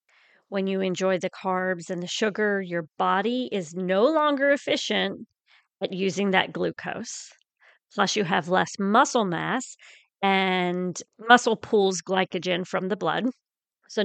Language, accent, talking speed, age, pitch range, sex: English, American, 135 wpm, 40-59, 185-240 Hz, female